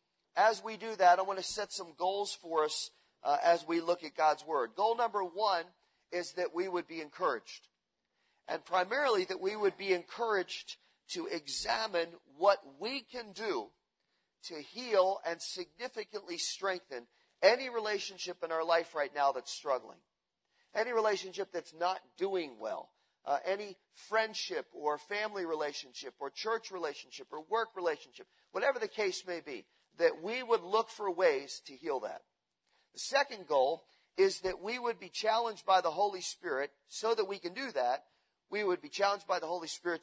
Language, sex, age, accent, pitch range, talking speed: English, male, 40-59, American, 175-225 Hz, 170 wpm